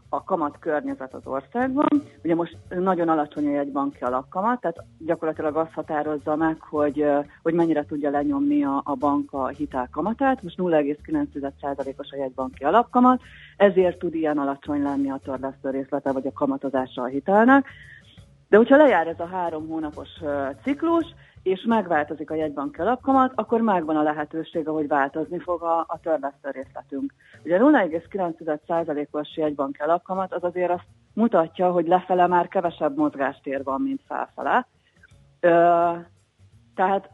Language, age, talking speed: Hungarian, 30-49, 135 wpm